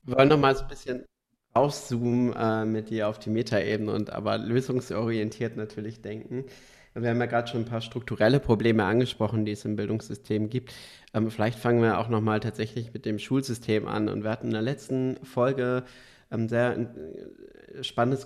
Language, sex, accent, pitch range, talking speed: English, male, German, 110-125 Hz, 185 wpm